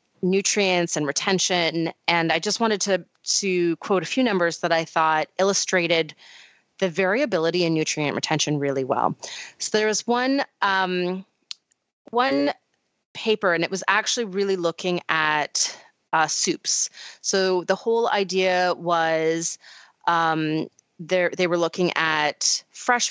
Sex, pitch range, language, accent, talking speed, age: female, 160-200 Hz, English, American, 135 wpm, 30-49